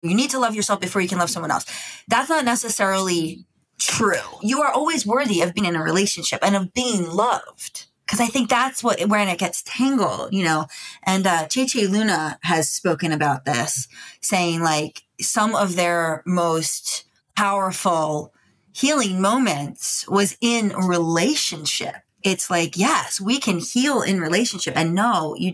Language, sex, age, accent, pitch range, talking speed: English, female, 20-39, American, 170-210 Hz, 165 wpm